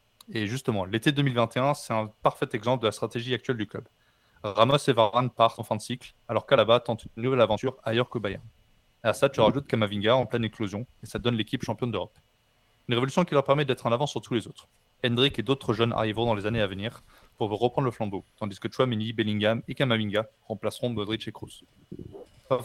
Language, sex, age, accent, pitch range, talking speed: French, male, 20-39, French, 110-130 Hz, 220 wpm